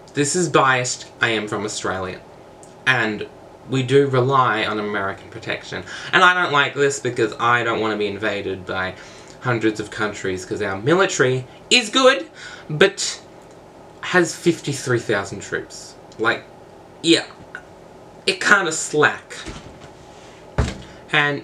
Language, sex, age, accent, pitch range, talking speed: English, male, 20-39, Australian, 110-165 Hz, 125 wpm